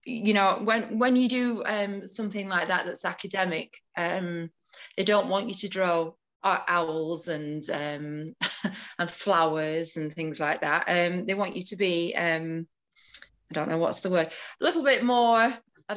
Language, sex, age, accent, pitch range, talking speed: English, female, 20-39, British, 180-235 Hz, 175 wpm